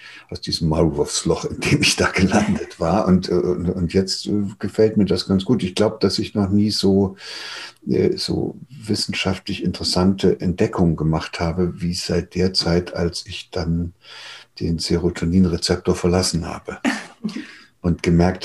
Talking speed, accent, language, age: 145 wpm, German, German, 60-79